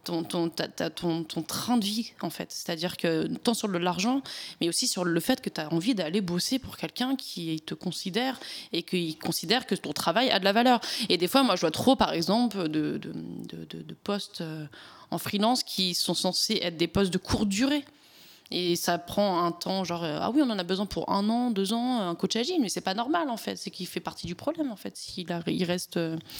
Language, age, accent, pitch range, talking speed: French, 20-39, French, 175-245 Hz, 240 wpm